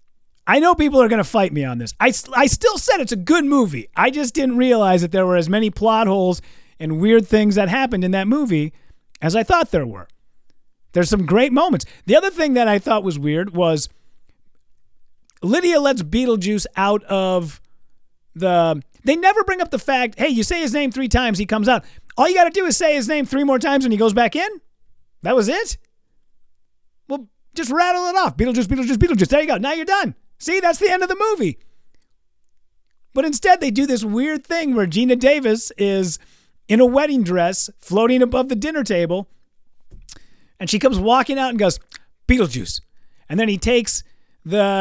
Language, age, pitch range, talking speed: English, 30-49, 195-275 Hz, 200 wpm